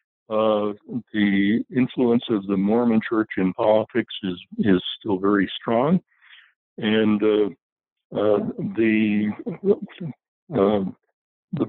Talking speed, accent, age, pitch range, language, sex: 105 wpm, American, 60-79, 95-115 Hz, English, male